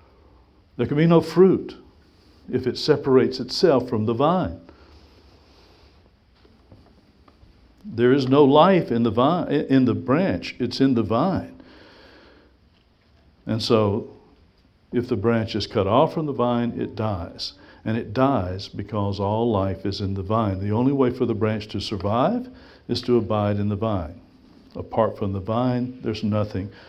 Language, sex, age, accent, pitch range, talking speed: English, male, 60-79, American, 105-130 Hz, 155 wpm